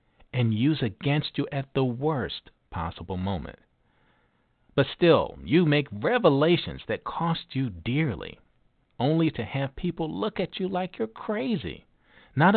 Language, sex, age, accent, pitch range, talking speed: English, male, 50-69, American, 115-155 Hz, 140 wpm